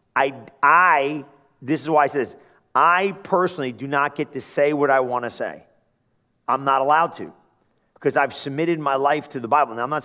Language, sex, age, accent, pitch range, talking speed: English, male, 40-59, American, 135-160 Hz, 210 wpm